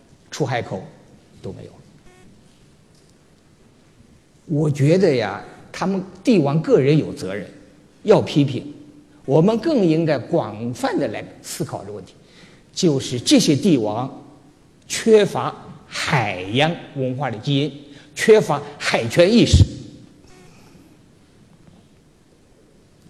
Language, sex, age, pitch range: Chinese, male, 50-69, 135-175 Hz